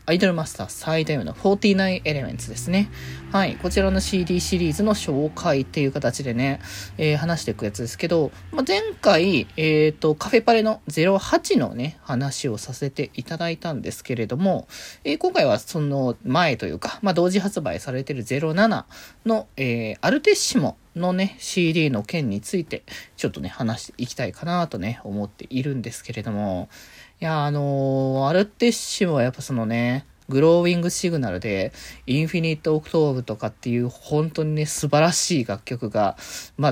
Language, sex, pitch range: Japanese, male, 120-175 Hz